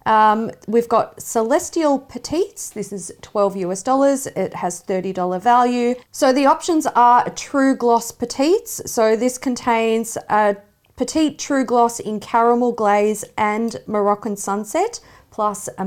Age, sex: 40-59, female